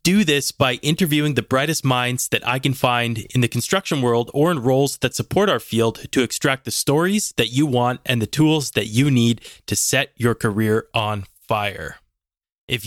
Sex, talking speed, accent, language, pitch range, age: male, 195 wpm, American, English, 115-135 Hz, 20-39